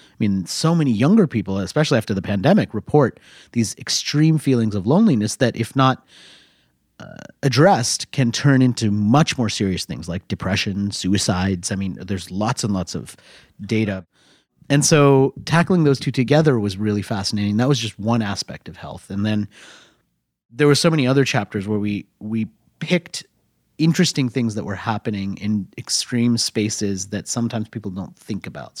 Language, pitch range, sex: English, 100-140 Hz, male